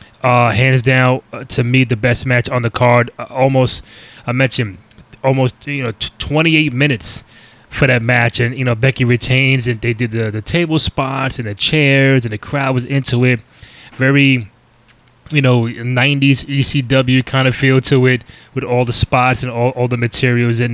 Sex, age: male, 20-39